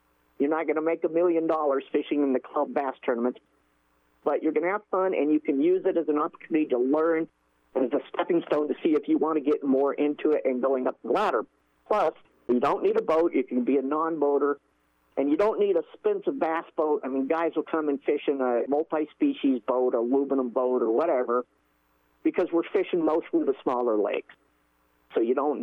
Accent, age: American, 50-69